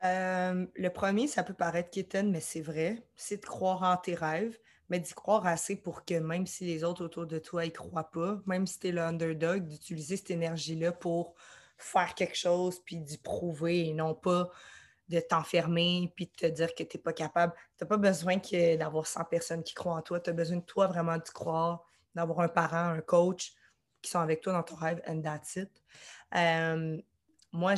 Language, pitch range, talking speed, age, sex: English, 165-185 Hz, 225 wpm, 20-39, female